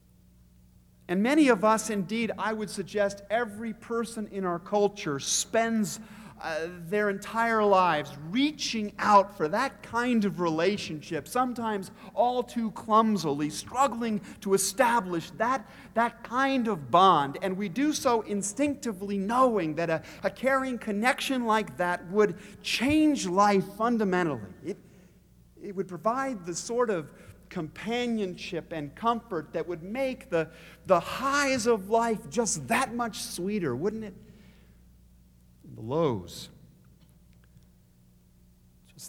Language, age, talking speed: English, 50-69, 125 wpm